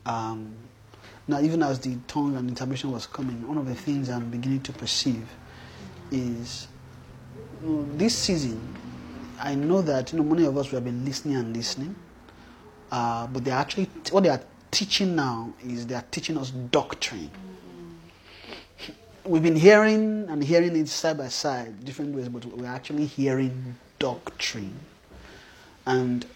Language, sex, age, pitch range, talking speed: English, male, 30-49, 120-155 Hz, 140 wpm